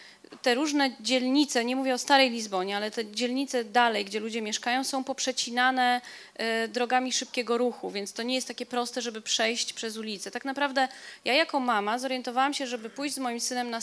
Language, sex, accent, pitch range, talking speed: Polish, female, native, 225-270 Hz, 185 wpm